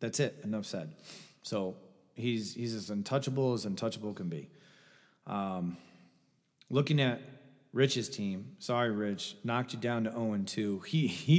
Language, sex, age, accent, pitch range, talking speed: English, male, 30-49, American, 105-140 Hz, 140 wpm